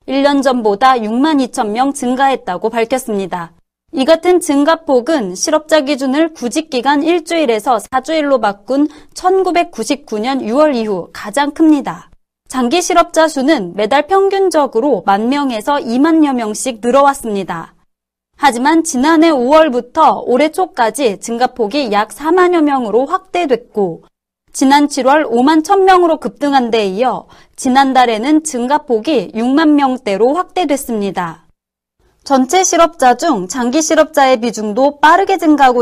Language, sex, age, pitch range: Korean, female, 30-49, 235-315 Hz